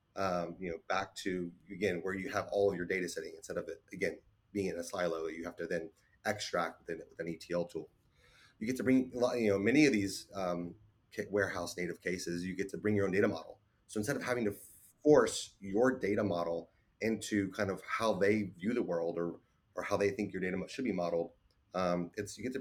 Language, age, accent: English, 30-49, American